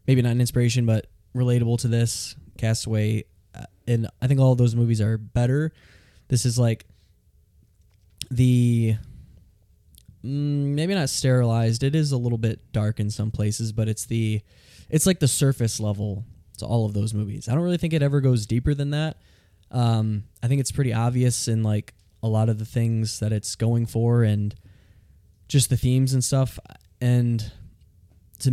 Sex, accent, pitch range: male, American, 105-120 Hz